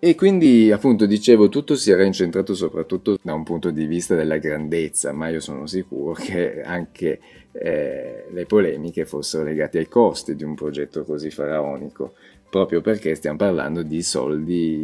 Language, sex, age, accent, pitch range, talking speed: Italian, male, 30-49, native, 75-100 Hz, 160 wpm